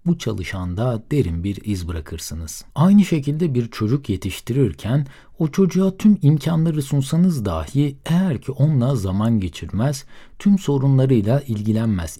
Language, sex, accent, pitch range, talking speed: Turkish, male, native, 95-145 Hz, 125 wpm